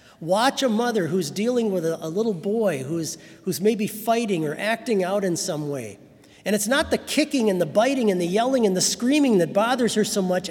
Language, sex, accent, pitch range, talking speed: English, male, American, 165-225 Hz, 215 wpm